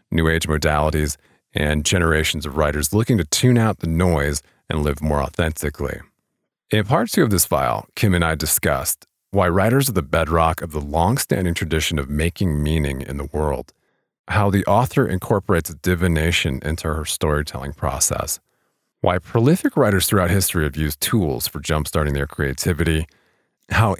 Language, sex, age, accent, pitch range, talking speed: English, male, 40-59, American, 75-100 Hz, 160 wpm